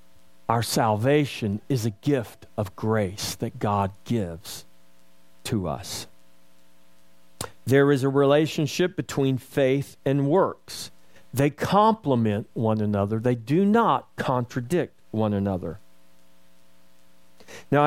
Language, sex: English, male